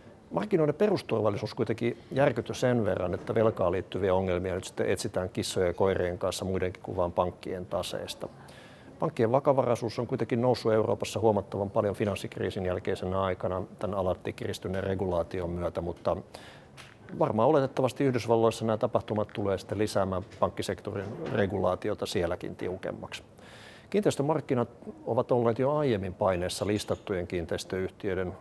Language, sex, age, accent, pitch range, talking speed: Finnish, male, 60-79, native, 95-115 Hz, 120 wpm